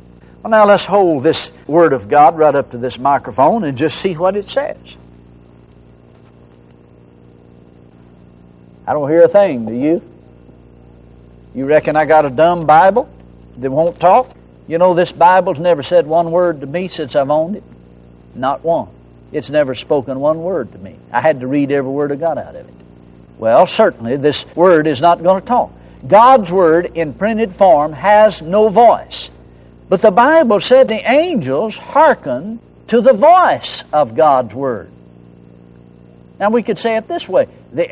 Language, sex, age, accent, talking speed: English, male, 60-79, American, 170 wpm